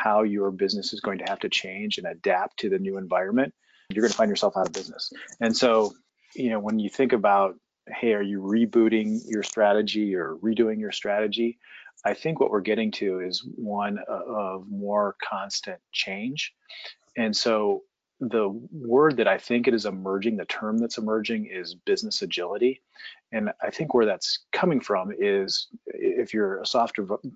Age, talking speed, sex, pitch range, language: 40-59, 180 wpm, male, 100-130 Hz, English